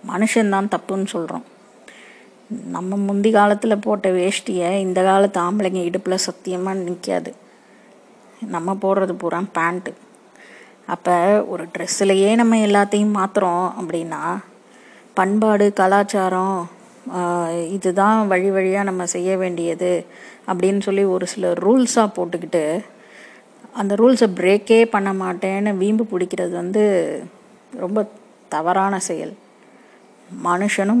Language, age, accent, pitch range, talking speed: Tamil, 20-39, native, 185-210 Hz, 100 wpm